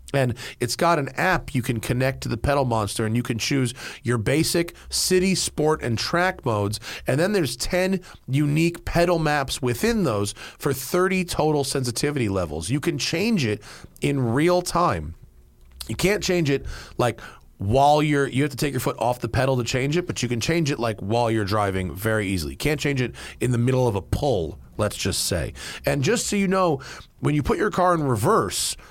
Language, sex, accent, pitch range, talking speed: English, male, American, 115-150 Hz, 205 wpm